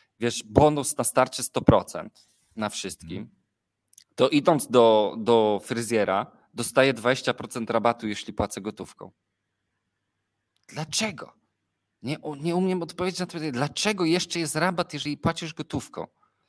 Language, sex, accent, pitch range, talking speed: Polish, male, native, 115-150 Hz, 120 wpm